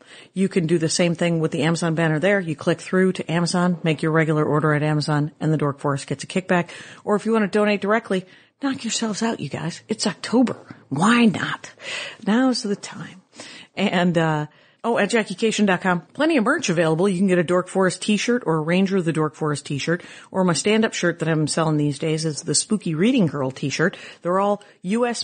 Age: 40-59